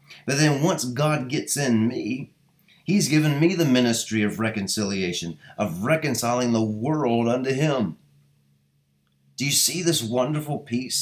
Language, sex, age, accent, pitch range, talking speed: English, male, 30-49, American, 110-140 Hz, 140 wpm